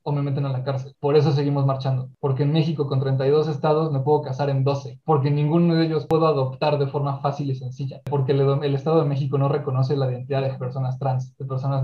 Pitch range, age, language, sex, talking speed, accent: 135-150 Hz, 20-39, Spanish, male, 240 wpm, Mexican